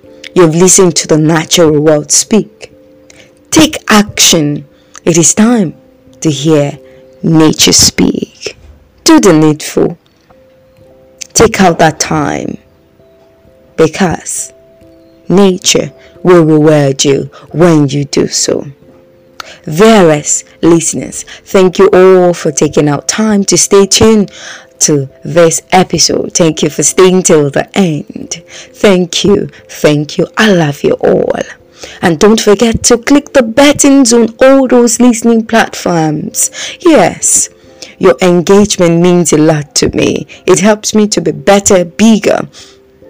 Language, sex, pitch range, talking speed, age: English, female, 150-210 Hz, 125 wpm, 20-39